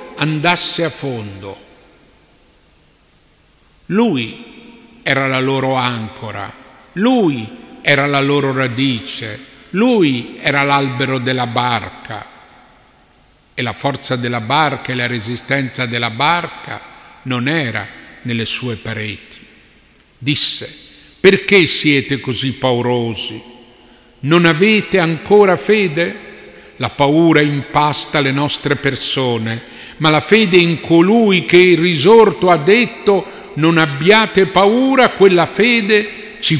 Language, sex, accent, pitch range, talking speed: Italian, male, native, 125-165 Hz, 105 wpm